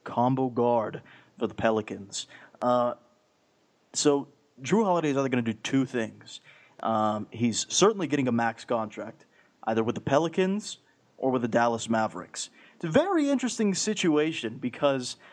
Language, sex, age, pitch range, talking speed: English, male, 30-49, 115-145 Hz, 150 wpm